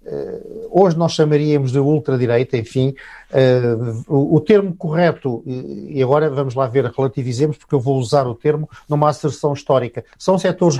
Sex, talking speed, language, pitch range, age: male, 150 wpm, Portuguese, 130-160 Hz, 50-69